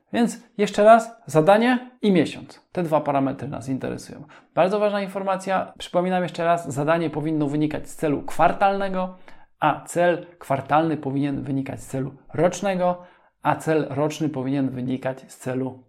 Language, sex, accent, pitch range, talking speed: Polish, male, native, 145-185 Hz, 145 wpm